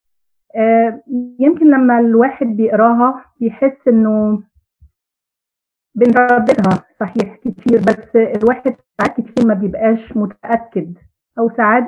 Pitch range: 205-245 Hz